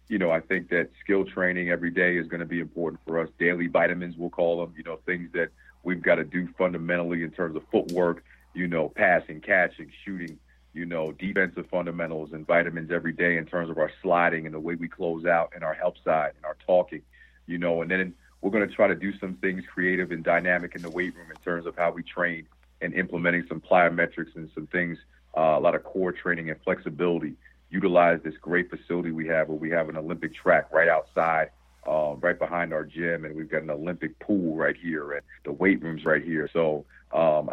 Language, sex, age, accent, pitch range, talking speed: English, male, 40-59, American, 80-90 Hz, 225 wpm